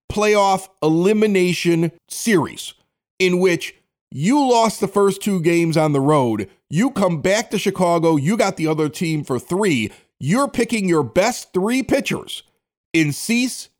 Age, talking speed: 40-59, 150 wpm